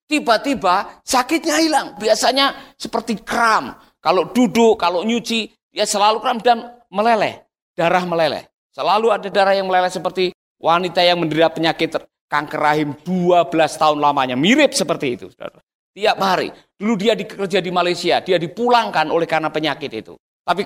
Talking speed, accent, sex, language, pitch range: 140 wpm, native, male, Indonesian, 210-285 Hz